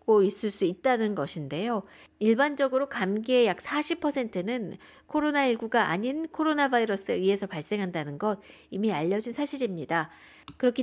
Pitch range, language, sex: 195-260 Hz, Korean, female